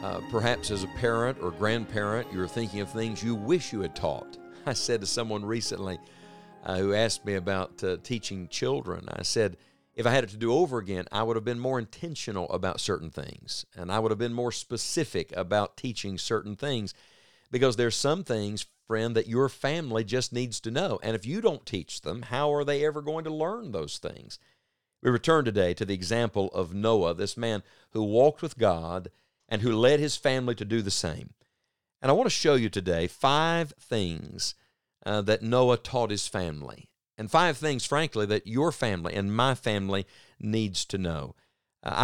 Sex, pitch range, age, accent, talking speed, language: male, 100-125 Hz, 50-69, American, 195 wpm, English